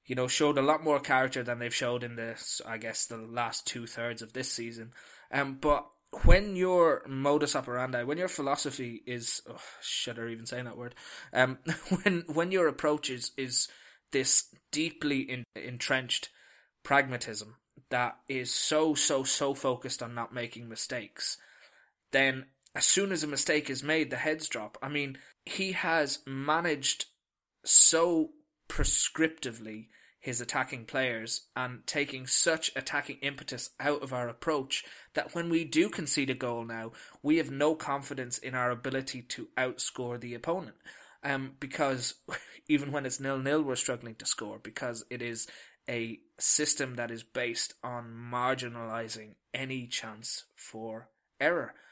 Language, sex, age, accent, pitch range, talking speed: English, male, 20-39, British, 120-145 Hz, 155 wpm